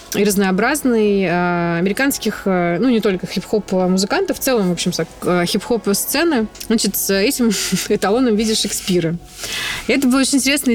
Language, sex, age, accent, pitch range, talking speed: Russian, female, 20-39, native, 175-220 Hz, 145 wpm